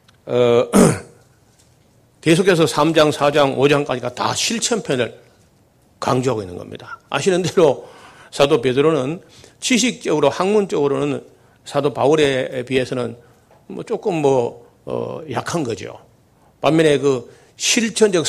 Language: Korean